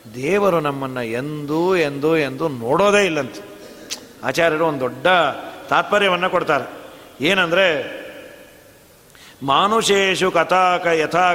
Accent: native